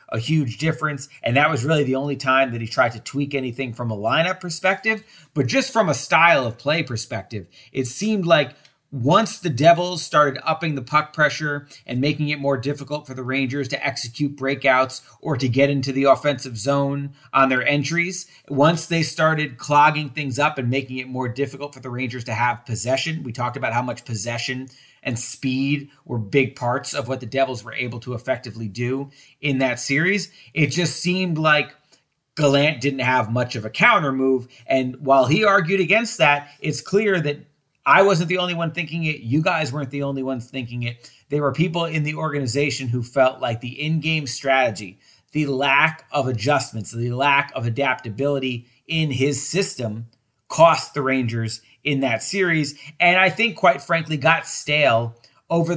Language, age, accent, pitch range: English, 30-49, American, 130-155 Hz